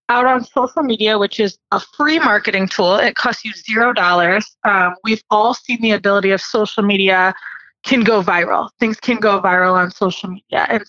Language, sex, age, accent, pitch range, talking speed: English, female, 20-39, American, 200-240 Hz, 195 wpm